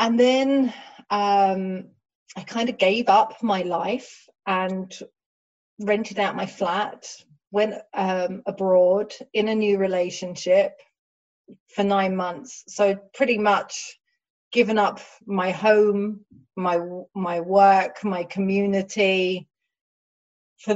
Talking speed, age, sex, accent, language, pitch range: 110 wpm, 30-49, female, British, English, 185-220 Hz